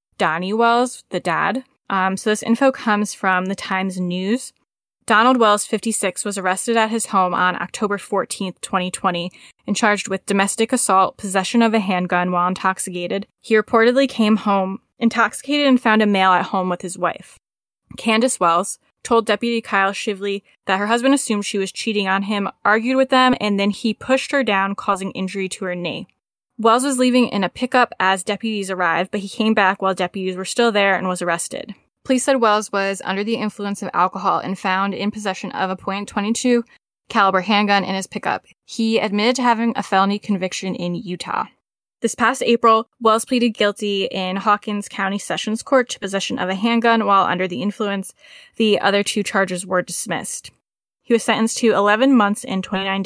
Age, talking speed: 10-29, 185 wpm